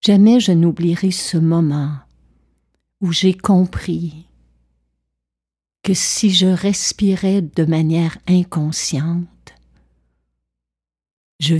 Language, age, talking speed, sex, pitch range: French, 60-79, 85 wpm, female, 120-185 Hz